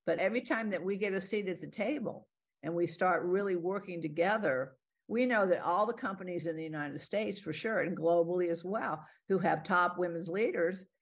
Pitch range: 160-195 Hz